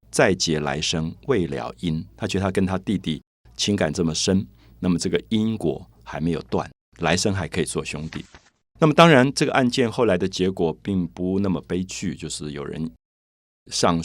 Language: Chinese